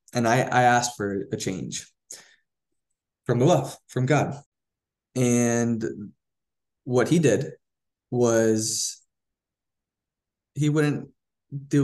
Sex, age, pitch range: male, 20-39, 105-120 Hz